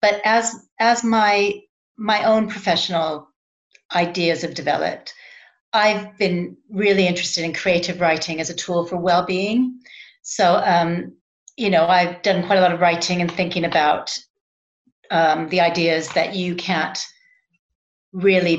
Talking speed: 140 wpm